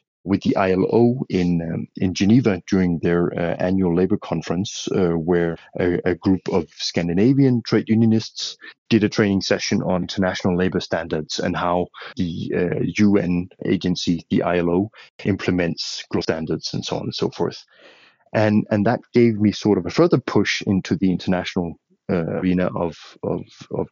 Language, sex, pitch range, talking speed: English, male, 90-105 Hz, 165 wpm